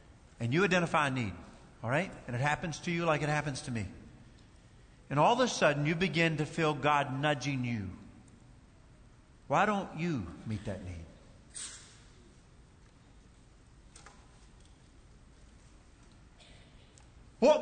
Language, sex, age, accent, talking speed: English, male, 50-69, American, 125 wpm